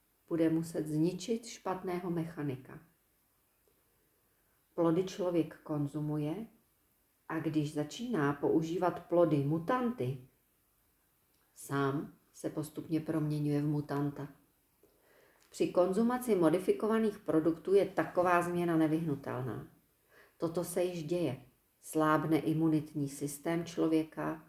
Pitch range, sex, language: 155-185 Hz, female, Czech